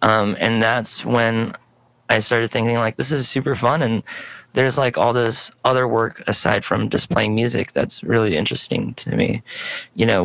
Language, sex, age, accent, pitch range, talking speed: English, male, 20-39, American, 105-120 Hz, 180 wpm